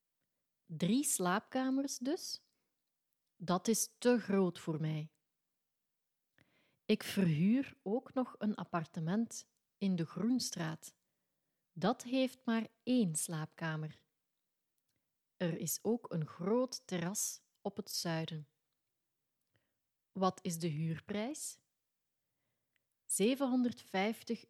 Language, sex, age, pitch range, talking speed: English, female, 30-49, 155-220 Hz, 90 wpm